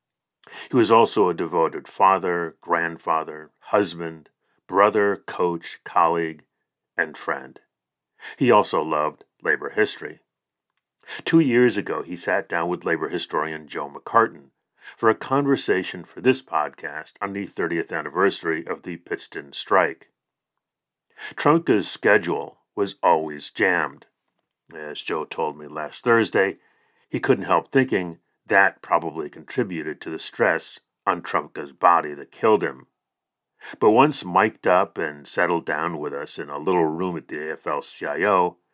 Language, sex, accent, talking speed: English, male, American, 135 wpm